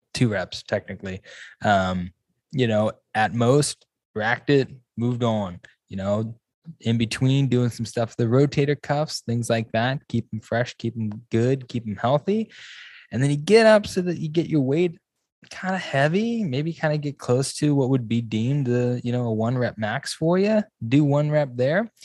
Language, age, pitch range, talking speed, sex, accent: English, 20-39, 105-125 Hz, 195 wpm, male, American